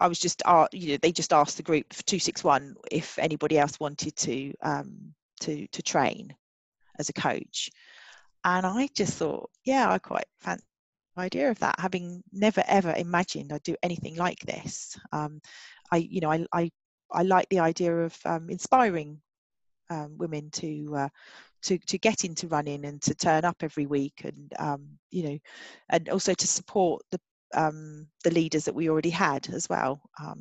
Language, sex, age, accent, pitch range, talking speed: English, female, 30-49, British, 150-190 Hz, 180 wpm